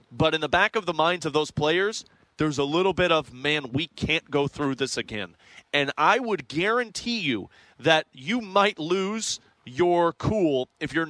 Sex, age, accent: male, 30-49, American